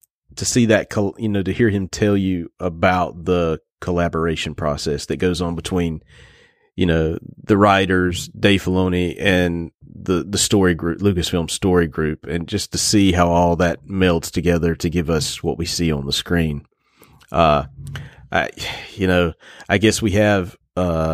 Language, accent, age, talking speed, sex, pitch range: English, American, 30-49, 165 wpm, male, 85-110 Hz